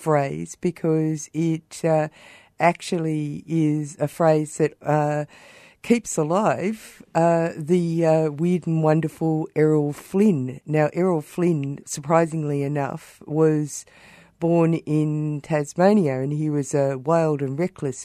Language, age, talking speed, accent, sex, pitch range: English, 50-69, 120 wpm, Australian, female, 140-165 Hz